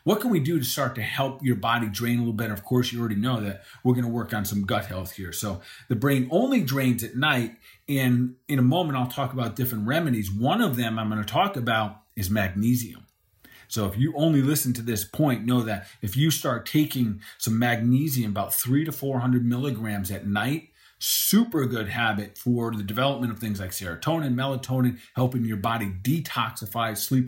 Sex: male